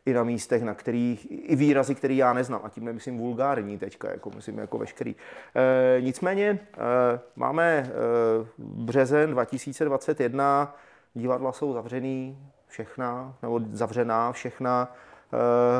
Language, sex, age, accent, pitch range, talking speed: Czech, male, 30-49, native, 120-135 Hz, 130 wpm